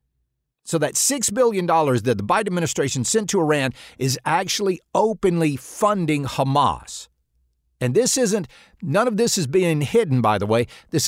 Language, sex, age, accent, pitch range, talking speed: English, male, 50-69, American, 125-185 Hz, 155 wpm